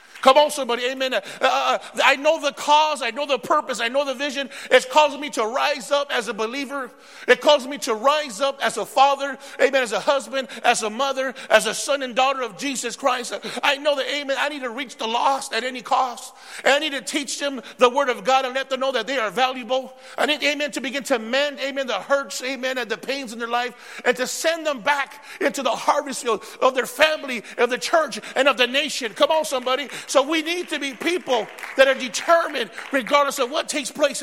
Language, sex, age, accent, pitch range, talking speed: English, male, 50-69, American, 250-290 Hz, 235 wpm